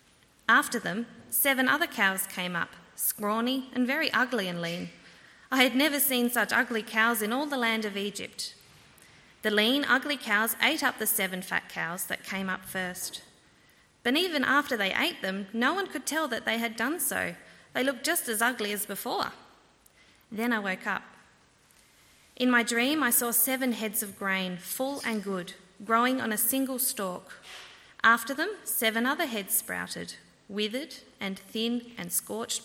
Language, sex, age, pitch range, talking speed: English, female, 20-39, 195-255 Hz, 175 wpm